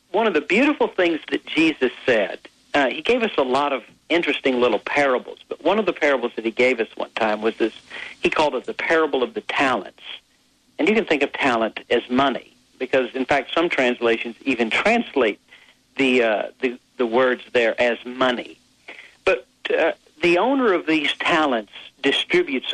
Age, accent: 50-69, American